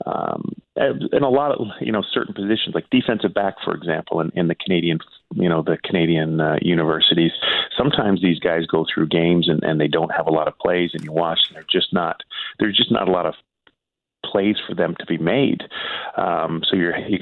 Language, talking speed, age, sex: English, 215 wpm, 40-59, male